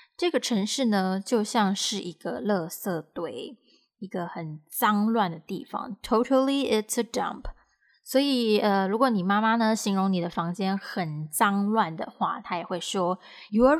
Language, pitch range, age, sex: Chinese, 195-245 Hz, 20-39, female